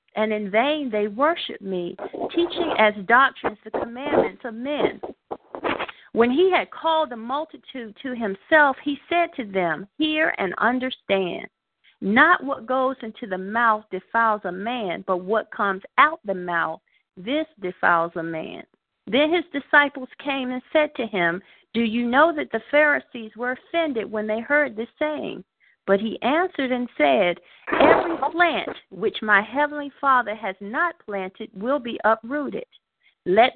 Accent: American